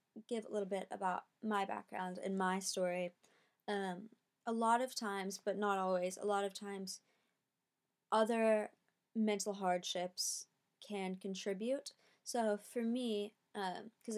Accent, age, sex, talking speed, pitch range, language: American, 20-39, female, 130 wpm, 190-225 Hz, English